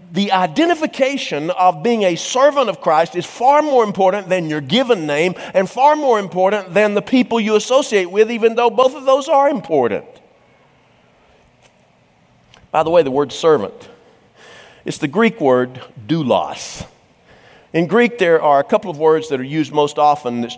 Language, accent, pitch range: English, American, 145-230 Hz